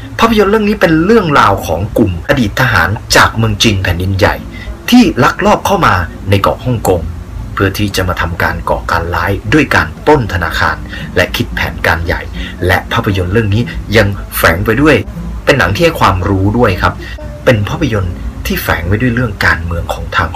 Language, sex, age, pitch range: Thai, male, 30-49, 90-110 Hz